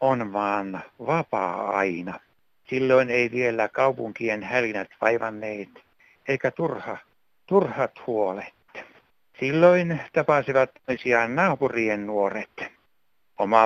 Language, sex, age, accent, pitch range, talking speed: Finnish, male, 60-79, native, 105-135 Hz, 90 wpm